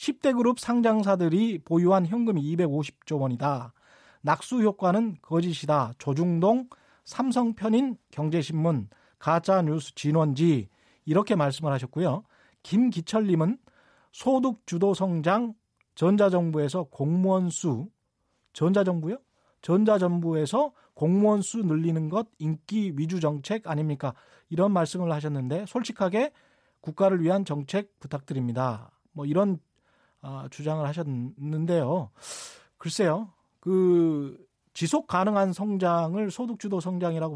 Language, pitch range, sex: Korean, 150-200 Hz, male